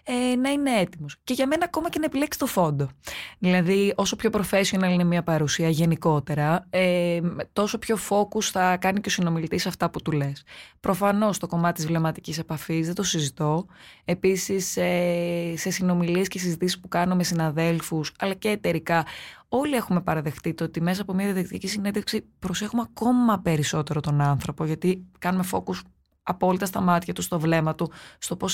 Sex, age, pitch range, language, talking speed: female, 20-39, 160-215 Hz, Greek, 175 wpm